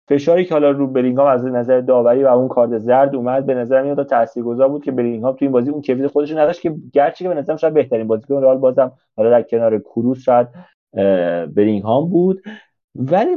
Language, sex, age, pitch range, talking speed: Persian, male, 30-49, 130-190 Hz, 205 wpm